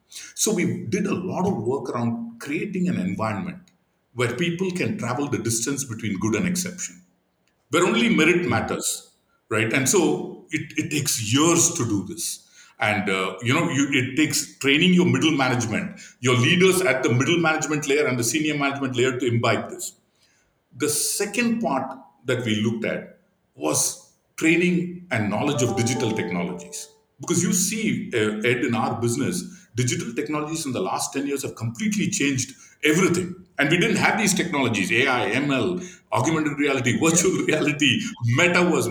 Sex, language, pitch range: male, English, 125-180 Hz